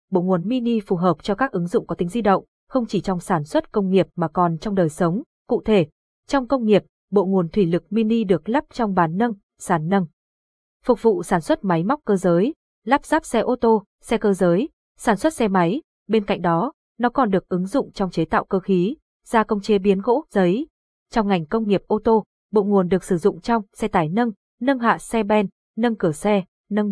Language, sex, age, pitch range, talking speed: Vietnamese, female, 20-39, 185-230 Hz, 230 wpm